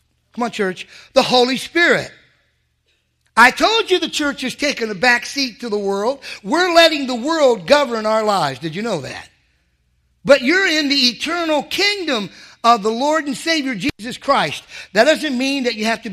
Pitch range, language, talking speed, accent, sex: 180-265 Hz, English, 180 wpm, American, male